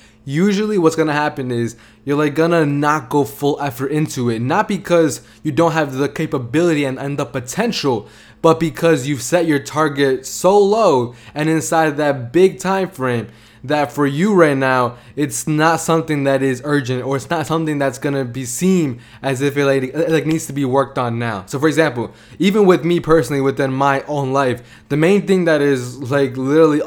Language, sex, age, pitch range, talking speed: English, male, 20-39, 130-160 Hz, 195 wpm